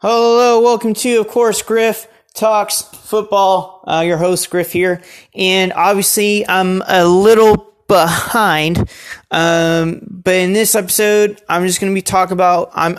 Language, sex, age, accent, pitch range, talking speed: English, male, 20-39, American, 170-205 Hz, 150 wpm